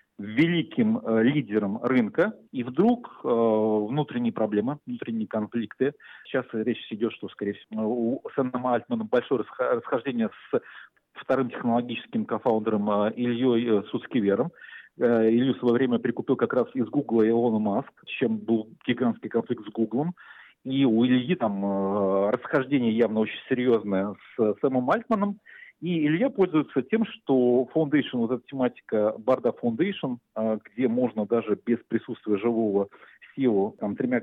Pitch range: 115-150 Hz